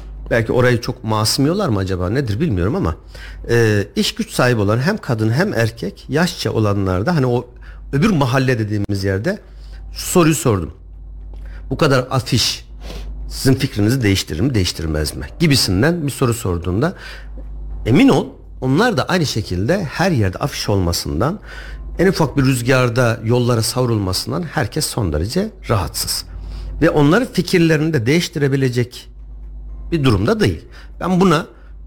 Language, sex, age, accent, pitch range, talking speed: Turkish, male, 60-79, native, 100-150 Hz, 135 wpm